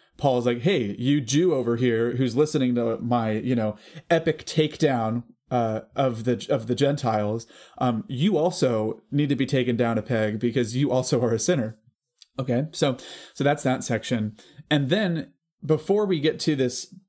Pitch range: 120-145 Hz